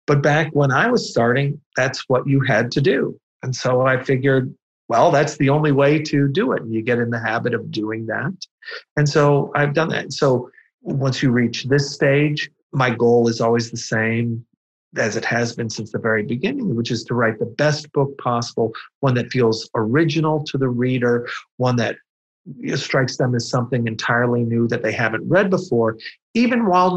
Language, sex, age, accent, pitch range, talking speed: English, male, 40-59, American, 115-150 Hz, 195 wpm